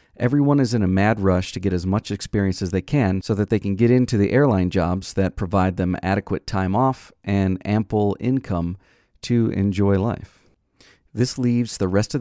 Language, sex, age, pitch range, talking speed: English, male, 40-59, 95-115 Hz, 195 wpm